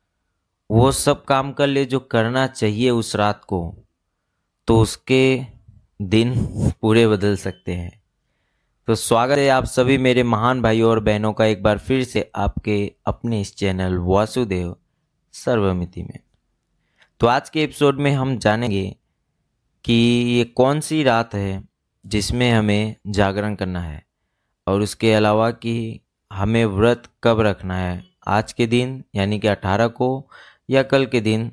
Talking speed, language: 150 wpm, Hindi